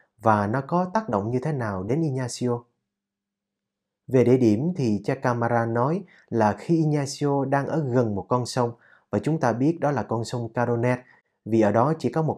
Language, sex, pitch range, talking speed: Vietnamese, male, 110-155 Hz, 195 wpm